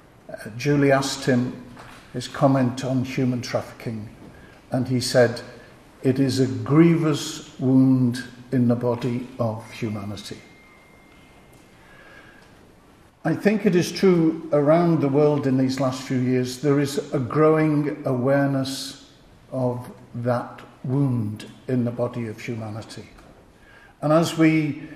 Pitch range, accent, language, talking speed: 125-150 Hz, British, English, 120 wpm